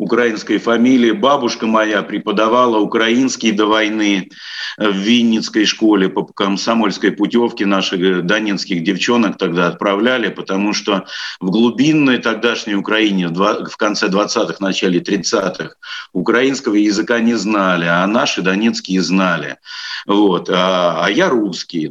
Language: Russian